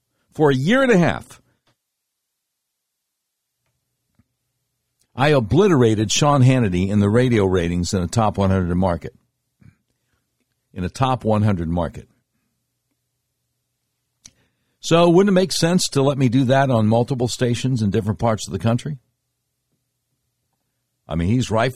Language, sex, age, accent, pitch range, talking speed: English, male, 60-79, American, 110-135 Hz, 130 wpm